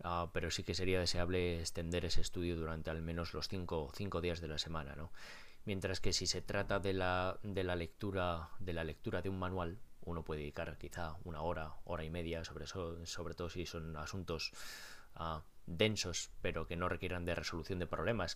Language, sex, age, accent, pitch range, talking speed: Spanish, male, 20-39, Spanish, 85-95 Hz, 205 wpm